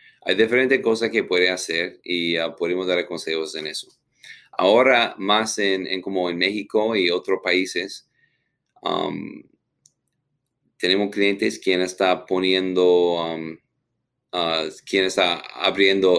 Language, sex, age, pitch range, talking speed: Spanish, male, 30-49, 90-105 Hz, 110 wpm